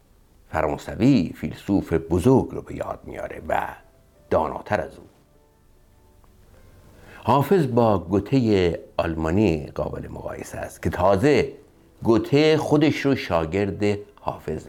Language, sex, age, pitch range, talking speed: Persian, male, 60-79, 85-110 Hz, 100 wpm